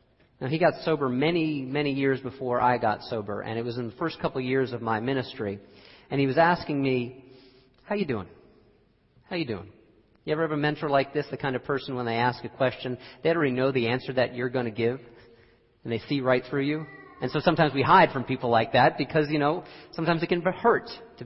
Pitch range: 115-150 Hz